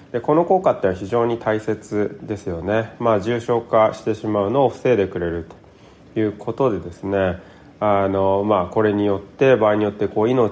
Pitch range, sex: 100-125 Hz, male